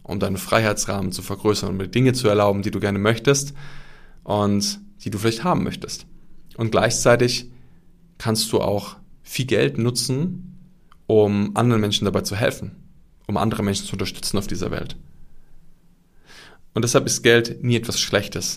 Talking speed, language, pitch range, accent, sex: 160 wpm, German, 100-130 Hz, German, male